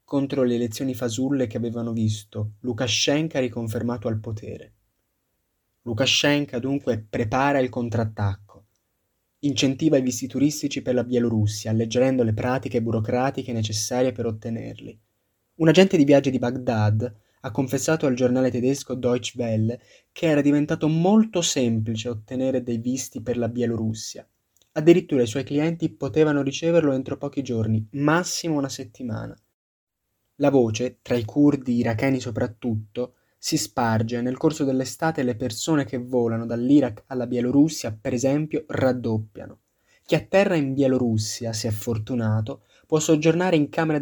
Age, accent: 20-39, native